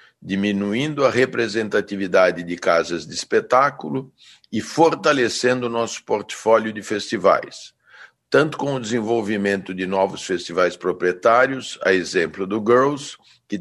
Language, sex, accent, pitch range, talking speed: Portuguese, male, Brazilian, 100-130 Hz, 120 wpm